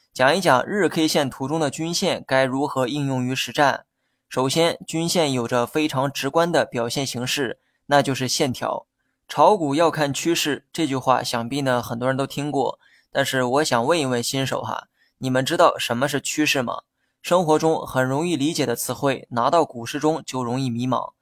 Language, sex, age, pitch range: Chinese, male, 20-39, 130-155 Hz